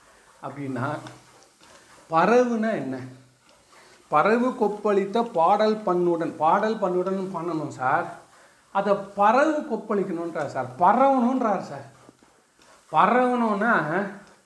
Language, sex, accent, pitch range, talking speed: Tamil, male, native, 165-210 Hz, 75 wpm